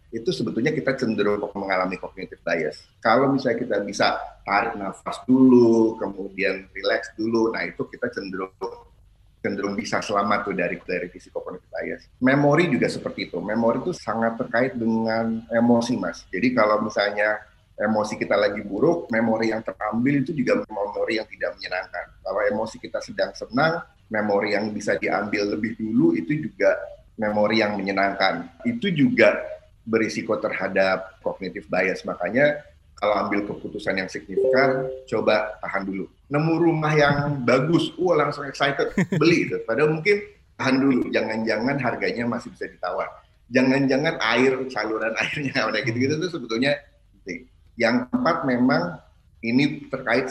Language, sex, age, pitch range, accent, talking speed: Indonesian, male, 30-49, 105-145 Hz, native, 140 wpm